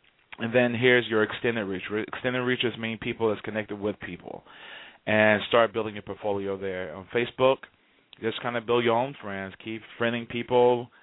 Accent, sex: American, male